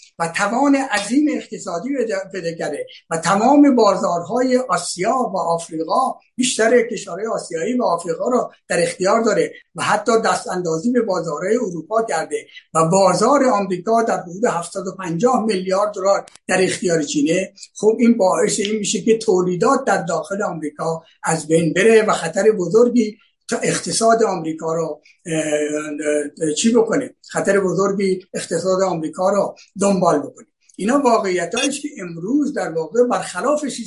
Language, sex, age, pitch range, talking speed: Persian, male, 60-79, 170-235 Hz, 140 wpm